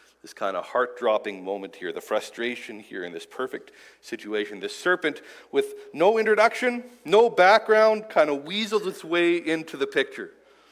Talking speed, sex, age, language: 155 wpm, male, 40-59, English